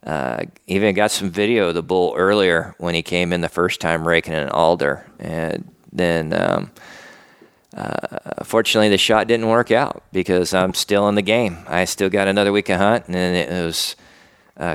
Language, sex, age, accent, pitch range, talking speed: English, male, 40-59, American, 90-105 Hz, 190 wpm